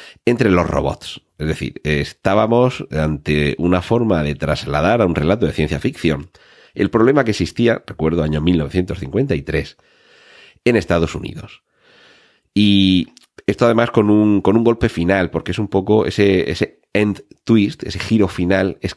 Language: Spanish